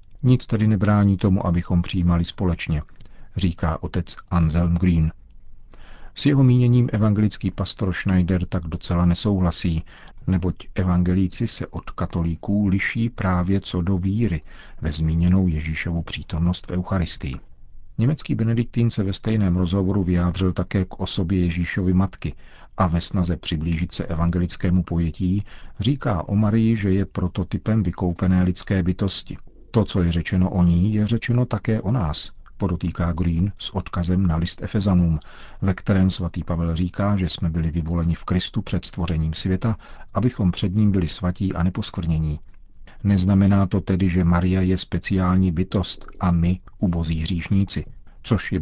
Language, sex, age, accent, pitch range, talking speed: Czech, male, 50-69, native, 85-100 Hz, 145 wpm